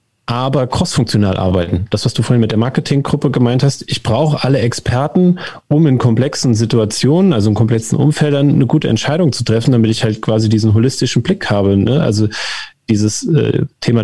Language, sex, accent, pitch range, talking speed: German, male, German, 105-135 Hz, 180 wpm